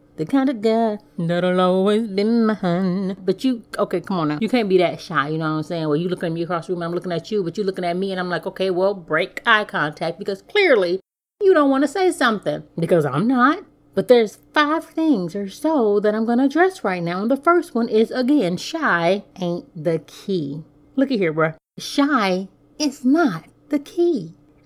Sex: female